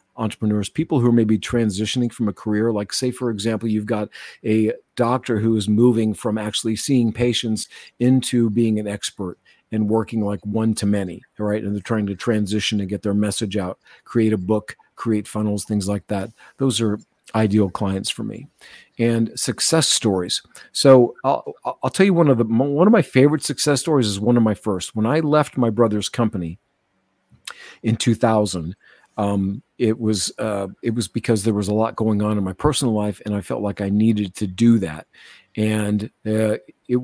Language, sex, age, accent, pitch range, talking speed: English, male, 50-69, American, 105-120 Hz, 195 wpm